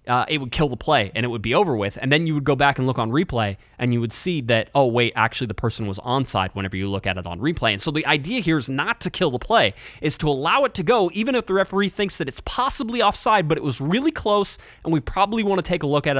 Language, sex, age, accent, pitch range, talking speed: English, male, 20-39, American, 115-160 Hz, 300 wpm